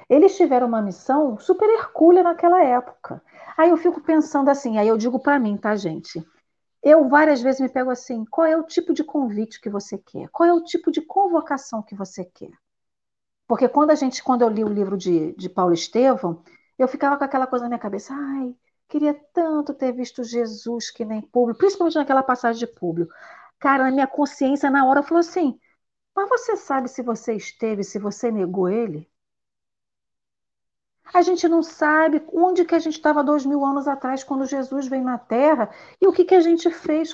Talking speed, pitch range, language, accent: 195 wpm, 240-315 Hz, Portuguese, Brazilian